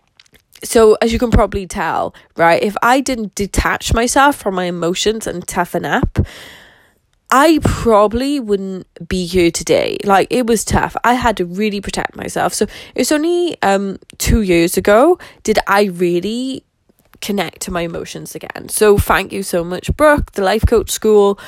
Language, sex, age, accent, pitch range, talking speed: English, female, 10-29, British, 180-225 Hz, 165 wpm